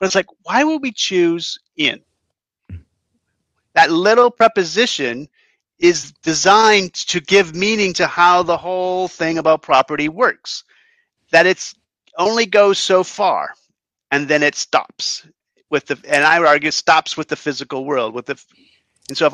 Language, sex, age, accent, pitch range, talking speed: English, male, 40-59, American, 145-185 Hz, 160 wpm